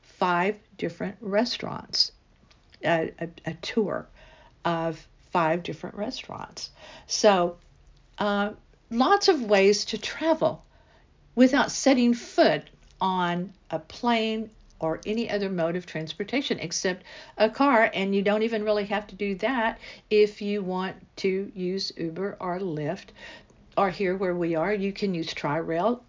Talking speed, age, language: 135 wpm, 50-69, English